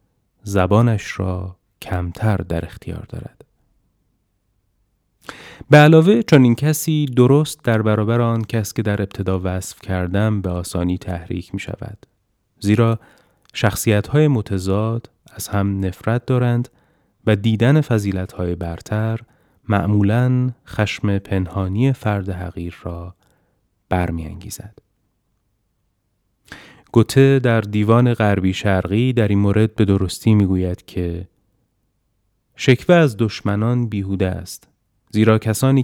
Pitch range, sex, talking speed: 95-120 Hz, male, 110 wpm